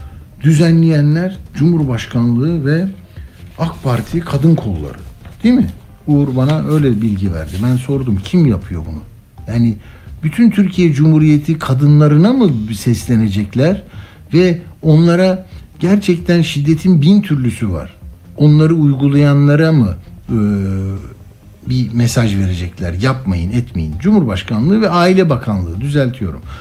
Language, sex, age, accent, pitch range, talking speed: Turkish, male, 60-79, native, 105-165 Hz, 105 wpm